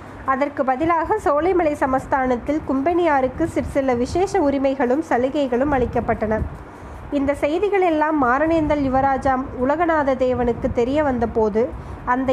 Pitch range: 250-315 Hz